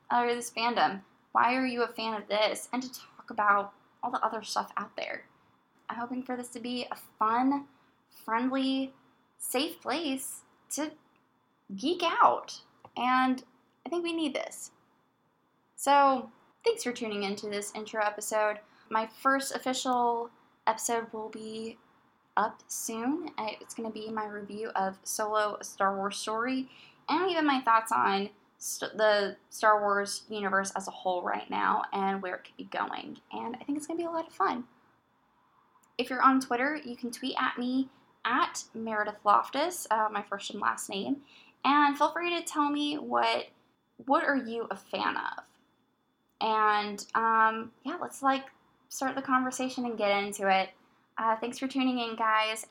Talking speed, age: 165 wpm, 10-29